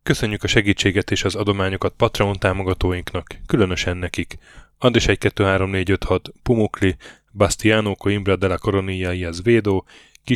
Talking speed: 115 wpm